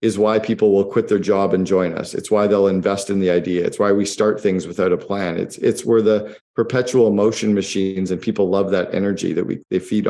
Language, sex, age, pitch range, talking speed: English, male, 50-69, 95-115 Hz, 245 wpm